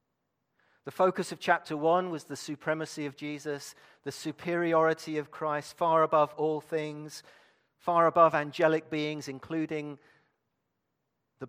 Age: 40-59